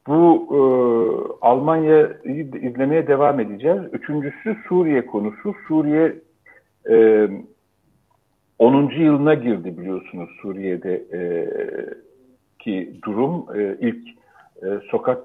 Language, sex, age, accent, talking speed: Turkish, male, 50-69, native, 85 wpm